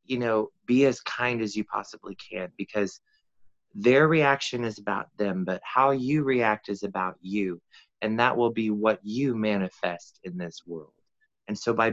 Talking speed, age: 175 wpm, 20-39